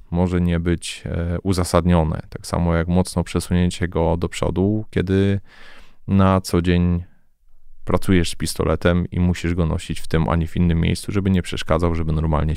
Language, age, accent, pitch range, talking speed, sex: Polish, 20-39, native, 85-95 Hz, 160 wpm, male